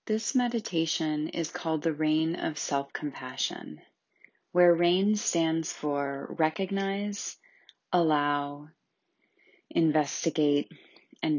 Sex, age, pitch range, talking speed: female, 30-49, 150-190 Hz, 85 wpm